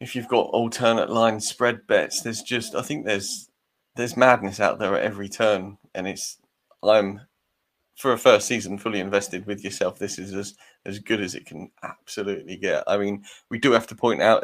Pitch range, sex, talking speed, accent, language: 105-125 Hz, male, 200 wpm, British, English